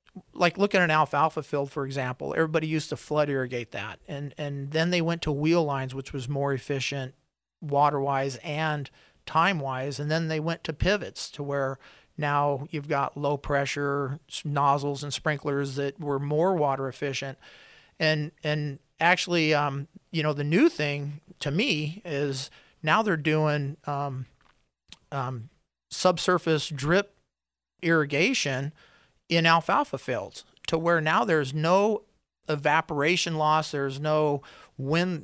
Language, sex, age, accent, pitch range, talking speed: English, male, 40-59, American, 140-155 Hz, 145 wpm